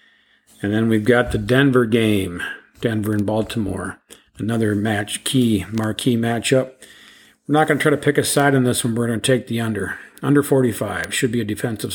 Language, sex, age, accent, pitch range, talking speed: English, male, 50-69, American, 110-130 Hz, 195 wpm